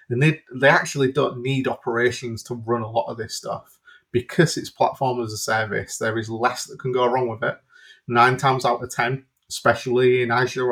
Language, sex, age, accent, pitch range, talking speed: English, male, 20-39, British, 115-135 Hz, 205 wpm